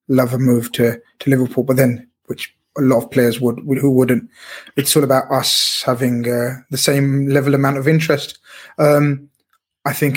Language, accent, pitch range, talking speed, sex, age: English, British, 130-145 Hz, 185 wpm, male, 20-39